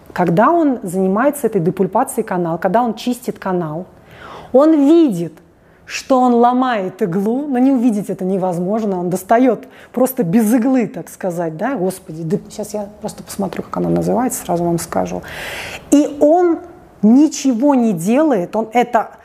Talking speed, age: 150 wpm, 30-49